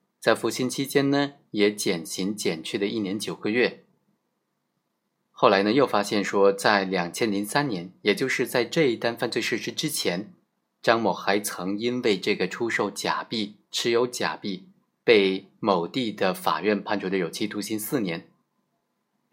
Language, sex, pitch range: Chinese, male, 95-125 Hz